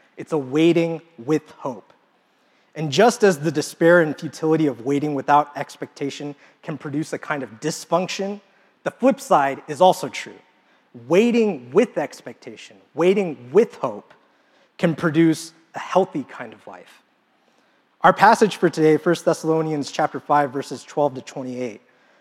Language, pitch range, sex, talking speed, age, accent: English, 145-185 Hz, male, 145 wpm, 30-49, American